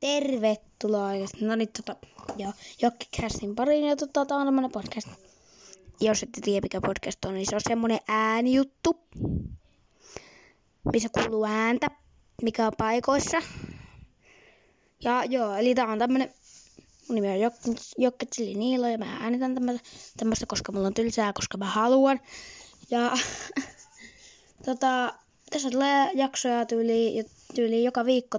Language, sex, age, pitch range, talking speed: Finnish, female, 20-39, 220-260 Hz, 135 wpm